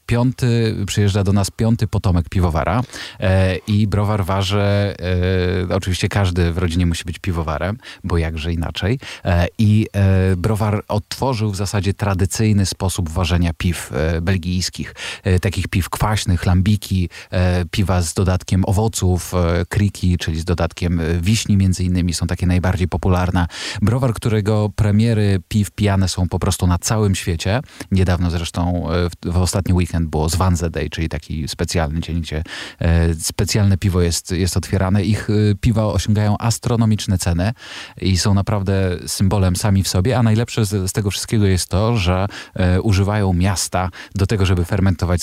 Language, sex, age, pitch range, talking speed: Polish, male, 40-59, 90-105 Hz, 140 wpm